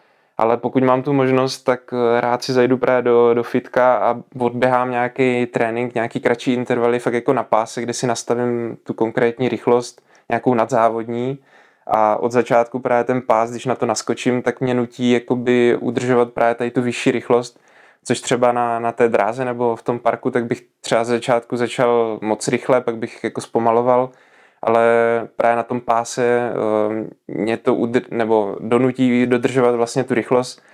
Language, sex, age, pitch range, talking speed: Czech, male, 20-39, 115-125 Hz, 170 wpm